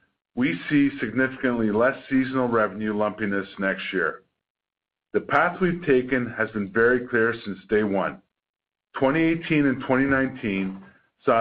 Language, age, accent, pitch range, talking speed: English, 50-69, American, 100-130 Hz, 125 wpm